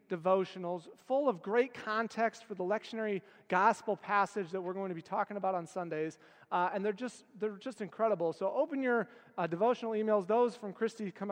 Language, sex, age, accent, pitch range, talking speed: English, male, 40-59, American, 185-230 Hz, 190 wpm